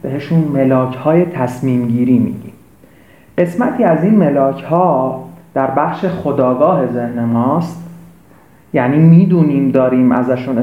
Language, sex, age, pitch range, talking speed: Persian, male, 40-59, 125-165 Hz, 115 wpm